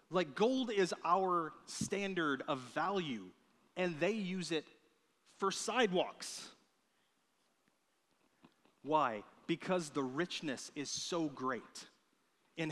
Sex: male